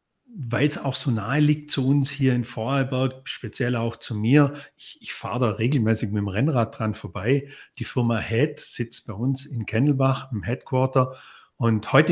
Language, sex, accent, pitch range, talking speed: German, male, German, 120-160 Hz, 185 wpm